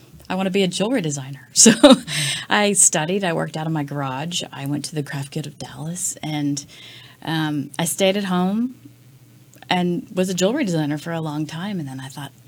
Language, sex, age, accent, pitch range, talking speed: English, female, 30-49, American, 140-175 Hz, 205 wpm